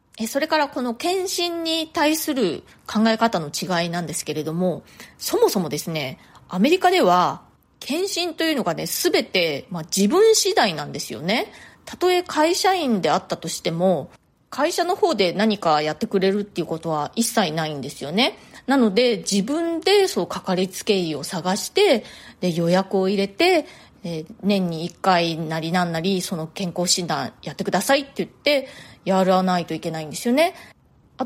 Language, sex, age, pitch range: Japanese, female, 20-39, 170-270 Hz